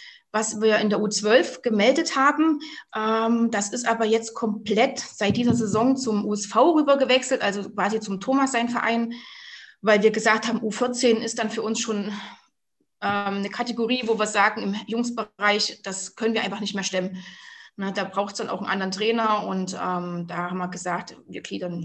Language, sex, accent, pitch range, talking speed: German, female, German, 185-225 Hz, 170 wpm